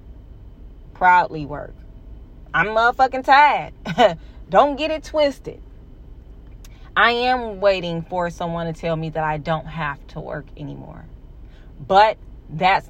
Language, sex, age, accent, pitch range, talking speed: English, female, 30-49, American, 150-185 Hz, 120 wpm